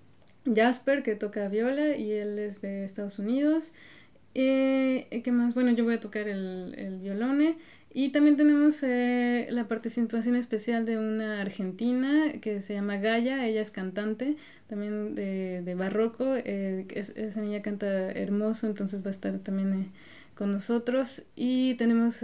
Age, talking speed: 20-39, 155 wpm